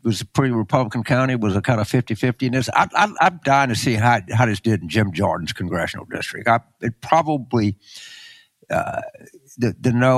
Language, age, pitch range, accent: English, 60-79, 105-135 Hz, American